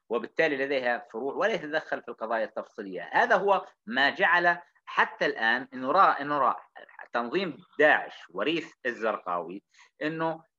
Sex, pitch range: male, 120-175 Hz